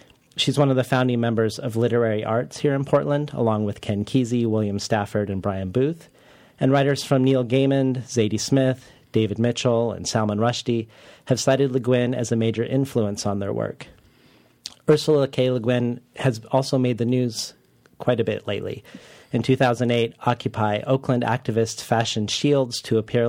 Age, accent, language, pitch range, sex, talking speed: 40-59, American, English, 110-130 Hz, male, 170 wpm